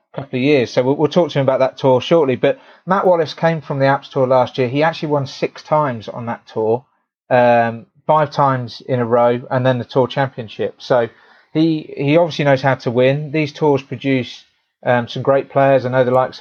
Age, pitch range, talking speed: 30-49, 125-140 Hz, 225 wpm